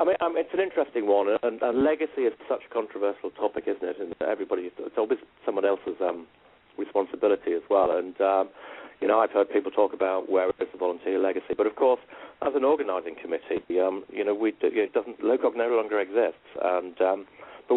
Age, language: 40-59, English